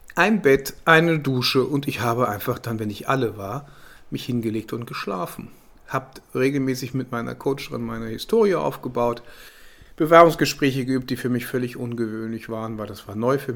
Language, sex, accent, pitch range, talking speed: German, male, German, 115-140 Hz, 170 wpm